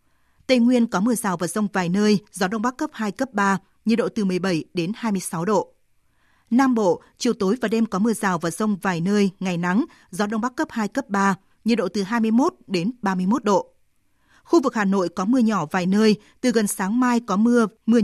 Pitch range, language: 195-240 Hz, Vietnamese